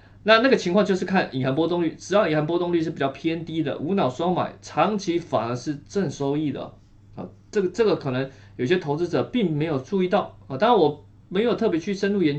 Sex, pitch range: male, 130-185 Hz